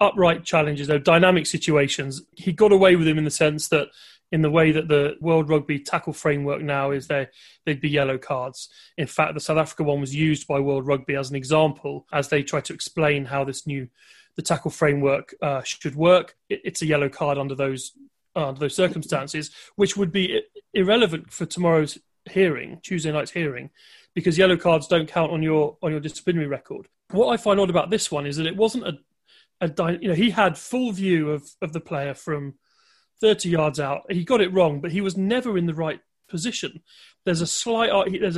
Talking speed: 205 wpm